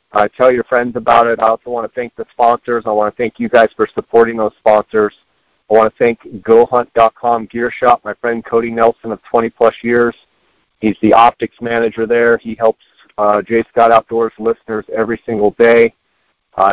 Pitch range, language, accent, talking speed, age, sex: 110-120 Hz, English, American, 190 wpm, 50-69, male